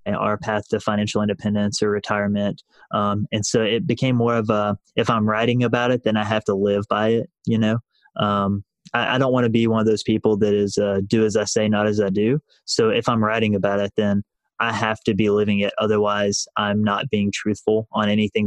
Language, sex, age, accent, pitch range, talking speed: English, male, 20-39, American, 105-115 Hz, 230 wpm